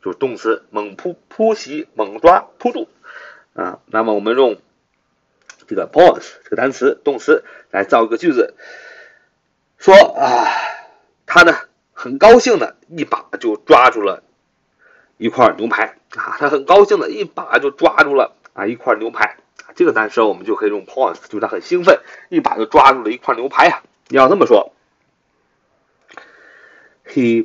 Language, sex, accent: Chinese, male, native